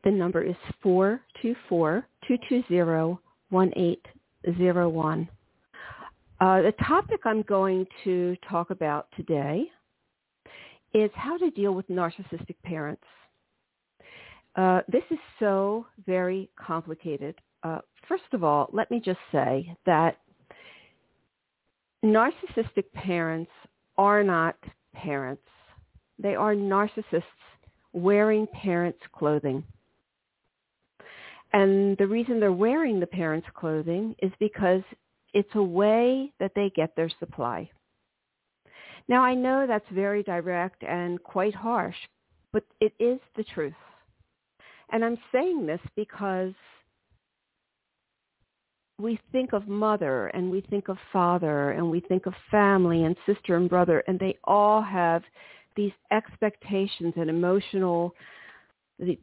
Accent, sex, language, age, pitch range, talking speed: American, female, English, 50-69, 175-215 Hz, 110 wpm